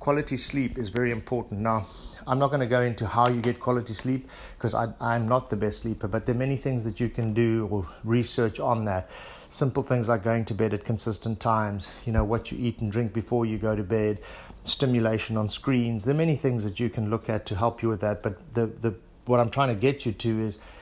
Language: English